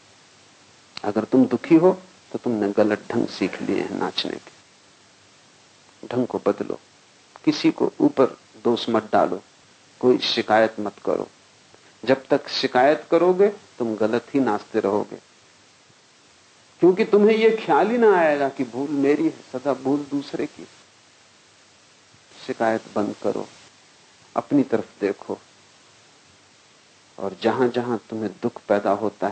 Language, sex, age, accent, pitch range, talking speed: English, male, 50-69, Indian, 115-185 Hz, 125 wpm